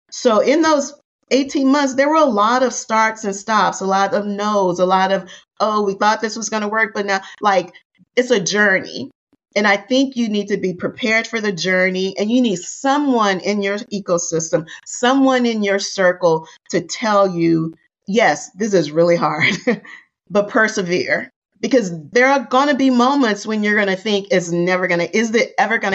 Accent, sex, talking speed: American, female, 200 wpm